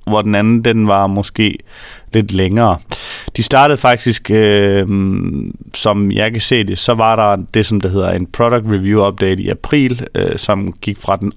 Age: 30-49